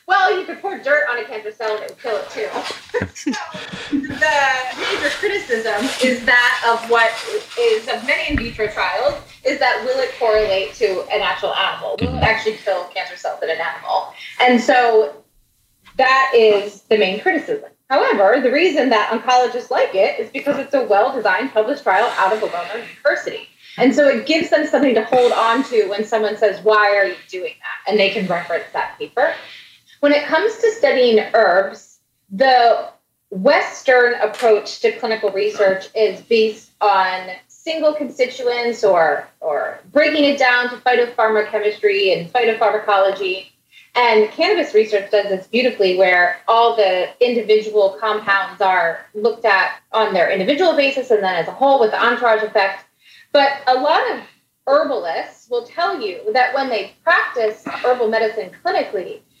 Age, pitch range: 20-39, 210-290 Hz